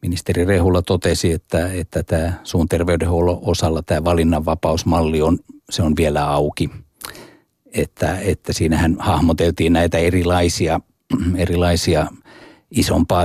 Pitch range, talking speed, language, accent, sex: 85-95 Hz, 110 wpm, Finnish, native, male